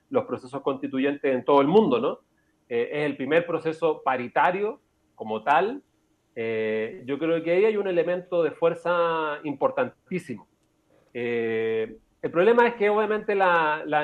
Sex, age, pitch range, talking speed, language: male, 40-59, 135-170 Hz, 150 wpm, Spanish